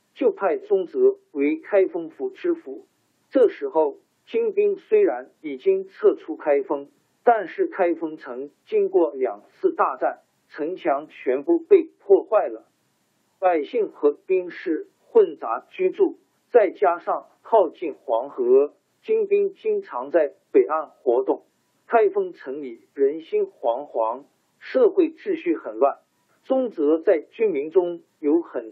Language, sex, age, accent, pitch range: Chinese, male, 50-69, native, 265-400 Hz